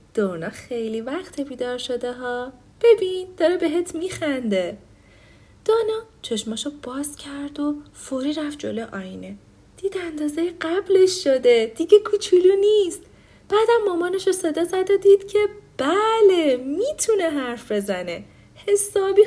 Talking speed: 120 wpm